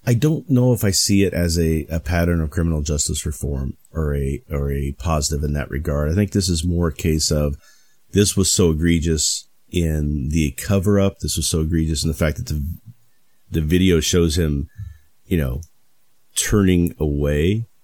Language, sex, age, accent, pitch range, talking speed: English, male, 40-59, American, 75-90 Hz, 185 wpm